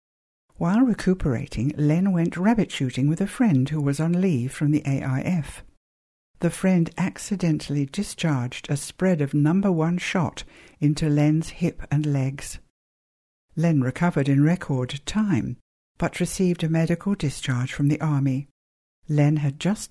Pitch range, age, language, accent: 135-170 Hz, 60-79, English, British